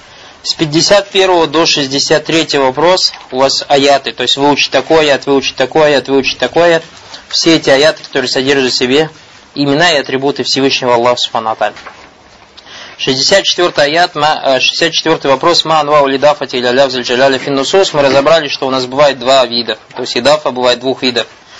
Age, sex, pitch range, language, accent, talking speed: 20-39, male, 130-155 Hz, Russian, native, 145 wpm